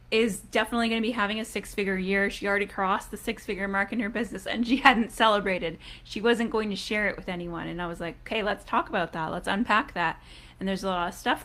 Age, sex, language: 20-39, female, English